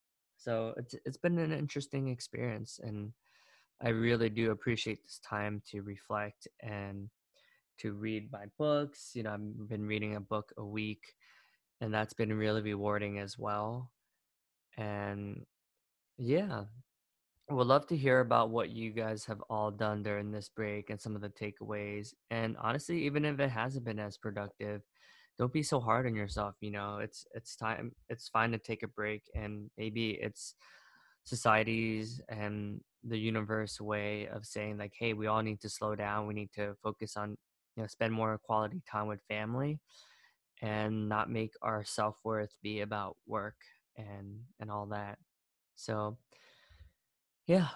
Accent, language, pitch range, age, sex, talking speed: American, English, 105-115 Hz, 20-39, male, 165 wpm